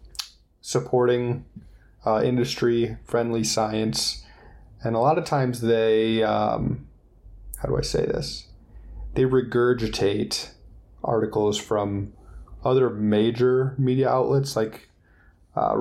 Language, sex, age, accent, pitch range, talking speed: English, male, 20-39, American, 105-120 Hz, 100 wpm